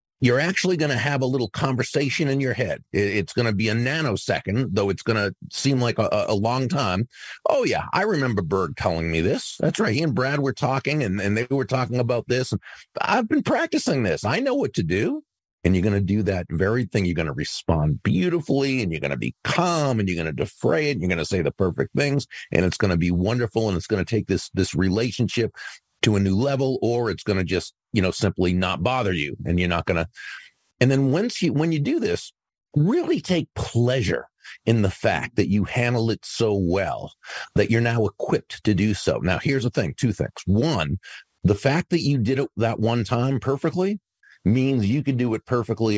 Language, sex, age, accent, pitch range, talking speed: English, male, 50-69, American, 95-130 Hz, 215 wpm